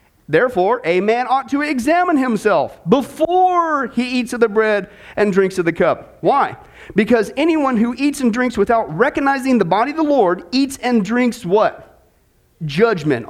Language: English